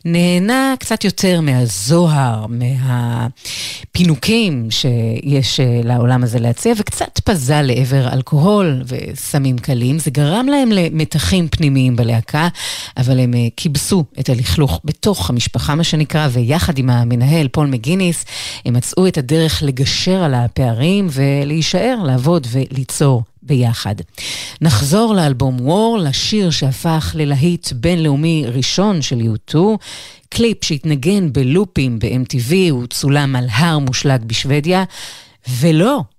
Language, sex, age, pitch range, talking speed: Hebrew, female, 40-59, 125-165 Hz, 110 wpm